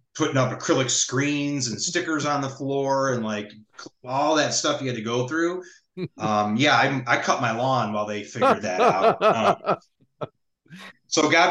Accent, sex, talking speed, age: American, male, 175 wpm, 30-49